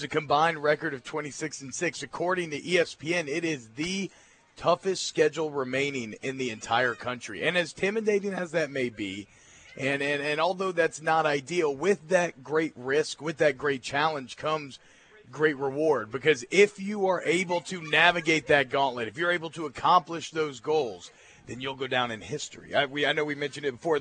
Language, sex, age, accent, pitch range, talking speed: English, male, 40-59, American, 130-165 Hz, 185 wpm